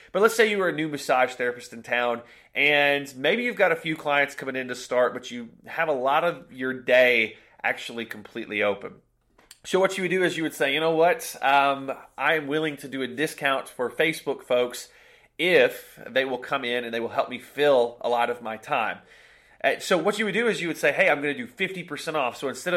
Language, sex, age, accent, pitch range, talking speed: English, male, 30-49, American, 120-160 Hz, 235 wpm